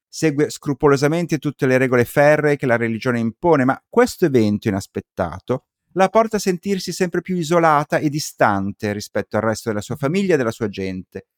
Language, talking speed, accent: Italian, 175 wpm, native